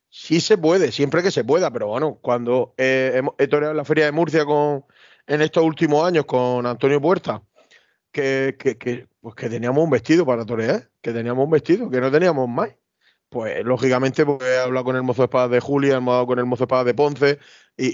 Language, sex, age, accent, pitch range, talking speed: Spanish, male, 30-49, Spanish, 130-160 Hz, 215 wpm